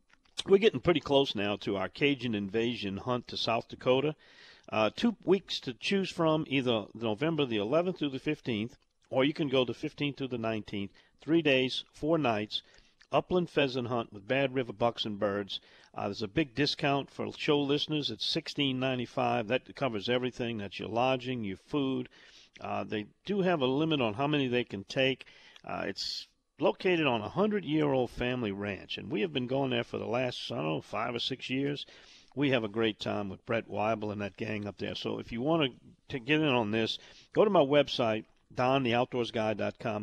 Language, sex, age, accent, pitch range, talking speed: English, male, 50-69, American, 110-145 Hz, 195 wpm